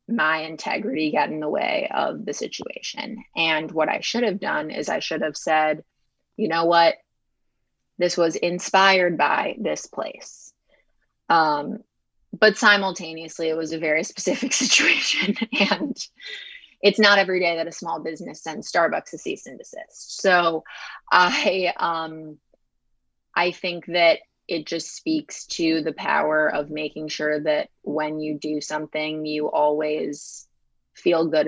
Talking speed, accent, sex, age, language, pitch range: 145 wpm, American, female, 20-39, English, 150-175 Hz